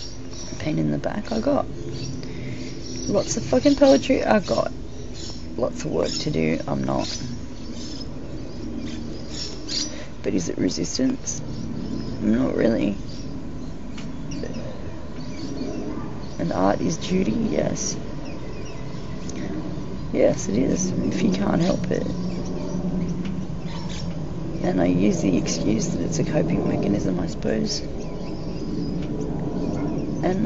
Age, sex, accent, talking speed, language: 30-49, female, Australian, 100 wpm, English